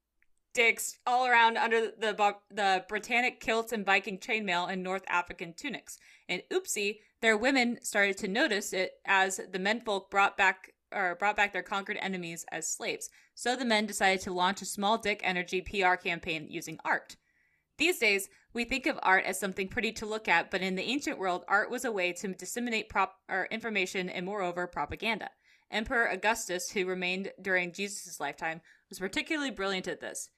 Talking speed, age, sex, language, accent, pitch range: 180 wpm, 20-39, female, English, American, 185-225 Hz